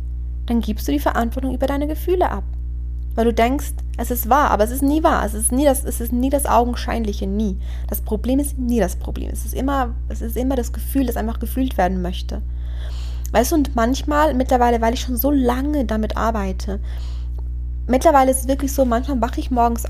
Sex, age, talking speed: female, 20-39, 195 wpm